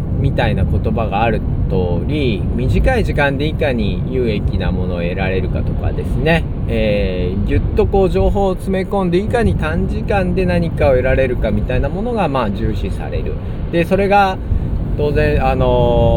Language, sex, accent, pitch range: Japanese, male, native, 95-135 Hz